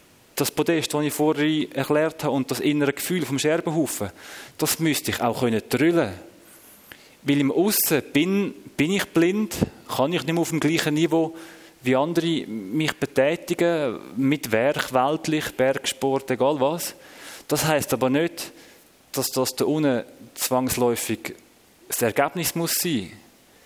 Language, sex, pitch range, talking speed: German, male, 130-165 Hz, 140 wpm